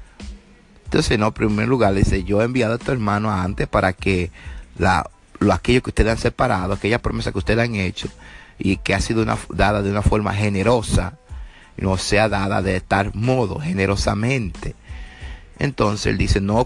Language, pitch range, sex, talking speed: English, 95-115 Hz, male, 180 wpm